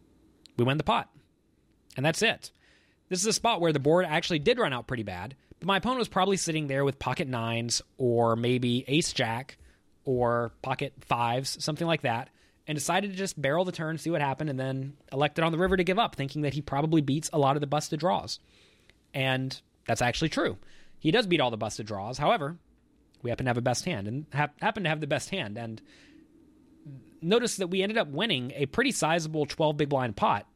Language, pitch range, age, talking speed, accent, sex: English, 125-170 Hz, 30-49, 220 wpm, American, male